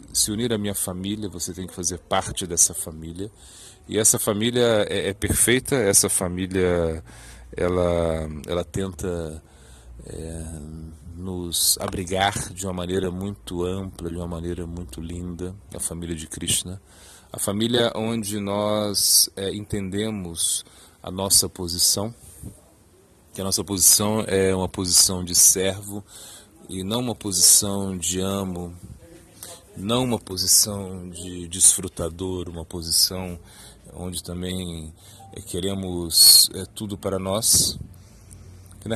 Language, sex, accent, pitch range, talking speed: Portuguese, male, Brazilian, 90-105 Hz, 120 wpm